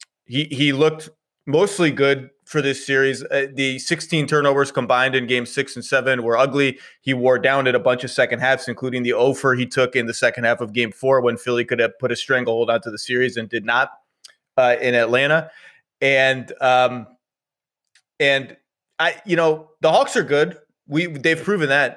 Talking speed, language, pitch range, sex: 195 wpm, English, 125-155 Hz, male